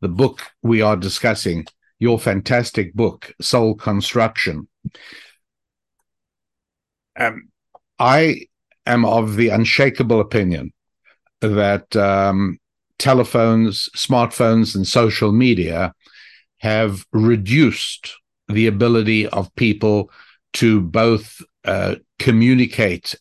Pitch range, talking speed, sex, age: 105-120 Hz, 90 wpm, male, 60-79